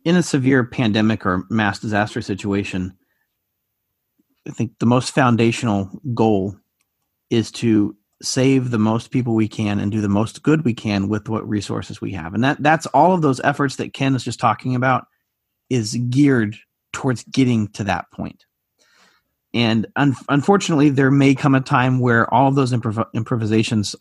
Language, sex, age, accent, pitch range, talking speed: English, male, 40-59, American, 105-140 Hz, 160 wpm